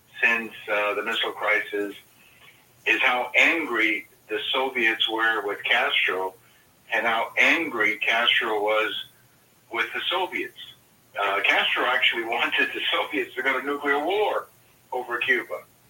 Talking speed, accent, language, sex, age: 130 wpm, American, English, male, 50-69